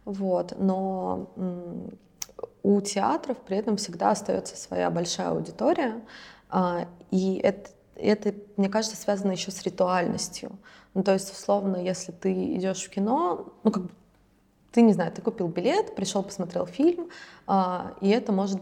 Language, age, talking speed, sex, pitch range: Russian, 20-39, 150 wpm, female, 170-200 Hz